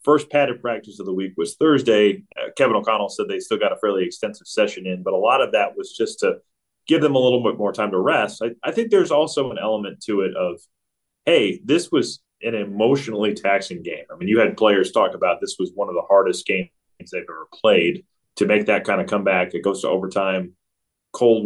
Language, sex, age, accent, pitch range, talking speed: English, male, 30-49, American, 100-160 Hz, 230 wpm